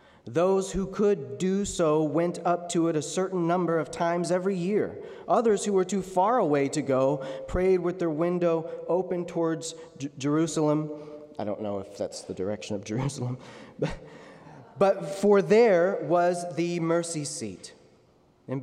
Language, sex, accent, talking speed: English, male, American, 155 wpm